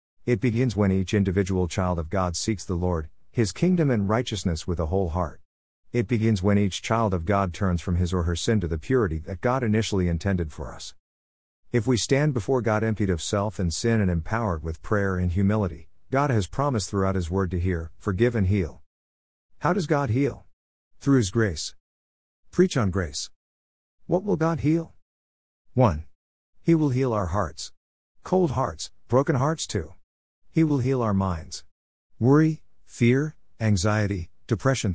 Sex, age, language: male, 50-69, English